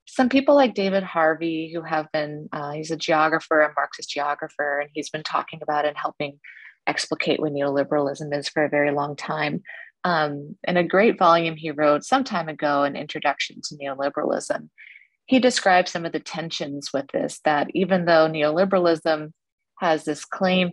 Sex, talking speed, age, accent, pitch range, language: female, 175 wpm, 30-49, American, 150-175 Hz, English